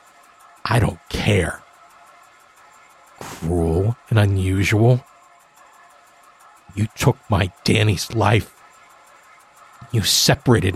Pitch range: 90-120 Hz